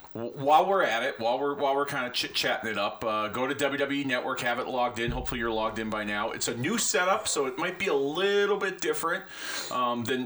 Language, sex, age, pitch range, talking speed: English, male, 30-49, 110-140 Hz, 245 wpm